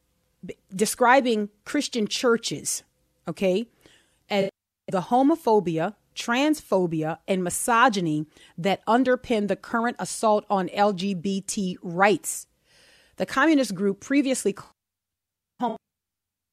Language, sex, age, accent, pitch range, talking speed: English, female, 30-49, American, 190-240 Hz, 85 wpm